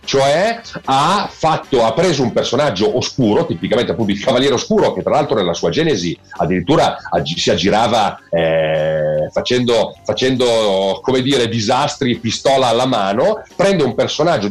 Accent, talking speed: native, 140 wpm